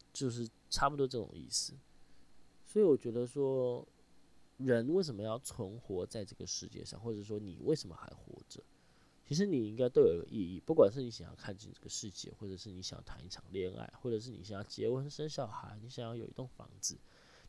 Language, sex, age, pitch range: Chinese, male, 20-39, 90-120 Hz